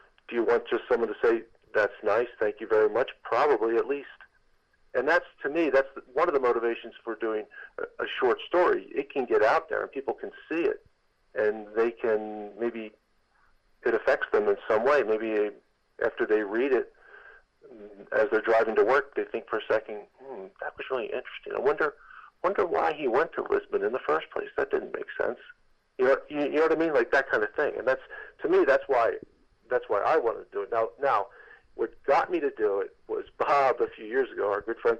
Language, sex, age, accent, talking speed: English, male, 50-69, American, 220 wpm